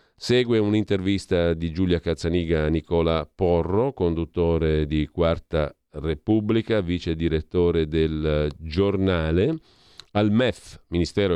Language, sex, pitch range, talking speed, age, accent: Italian, male, 80-110 Hz, 100 wpm, 40-59, native